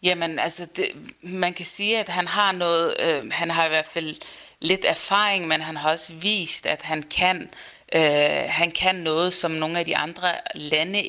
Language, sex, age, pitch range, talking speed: Danish, female, 30-49, 150-175 Hz, 175 wpm